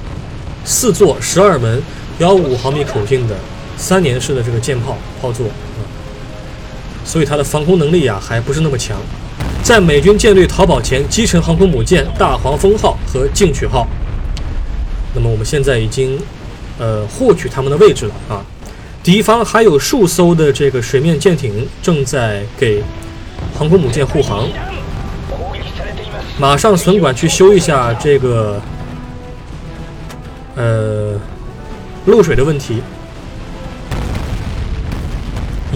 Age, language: 20-39, Chinese